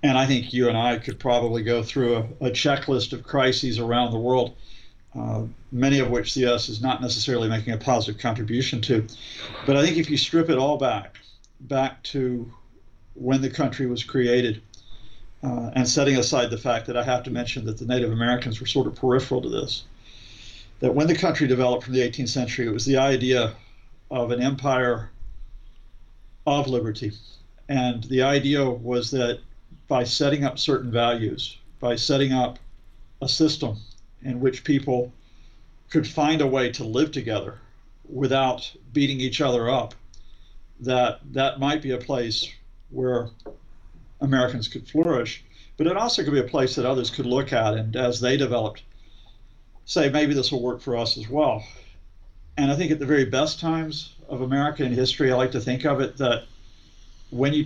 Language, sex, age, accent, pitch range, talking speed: English, male, 50-69, American, 115-135 Hz, 180 wpm